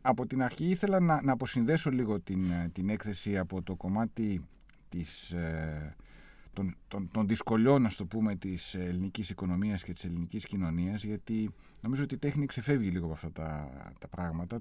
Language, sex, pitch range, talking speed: Greek, male, 90-130 Hz, 145 wpm